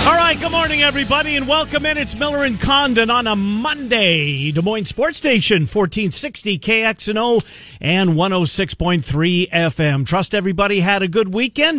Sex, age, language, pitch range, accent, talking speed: male, 50-69, English, 140-200 Hz, American, 165 wpm